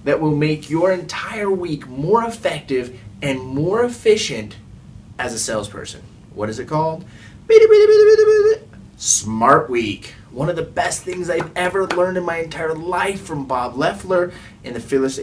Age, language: 30-49, English